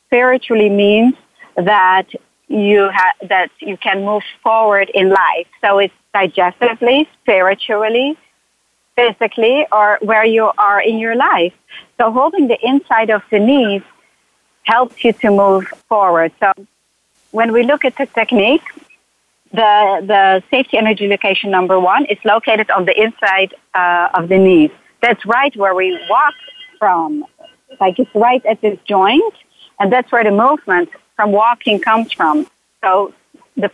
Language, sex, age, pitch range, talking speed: English, female, 50-69, 195-245 Hz, 145 wpm